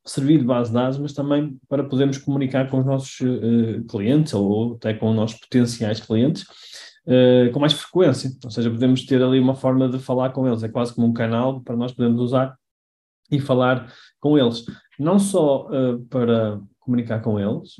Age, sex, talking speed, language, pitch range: 20-39, male, 190 wpm, Portuguese, 115-135 Hz